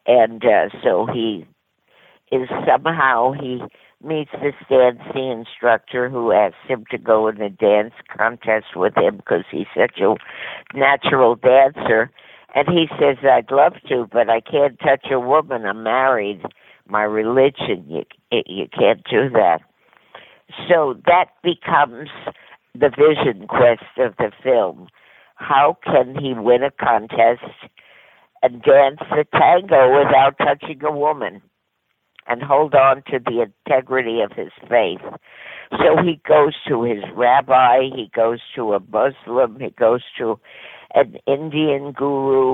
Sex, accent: female, American